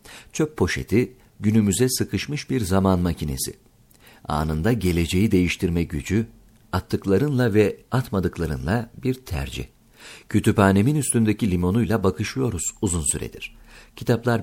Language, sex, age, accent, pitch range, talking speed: Turkish, male, 50-69, native, 90-115 Hz, 95 wpm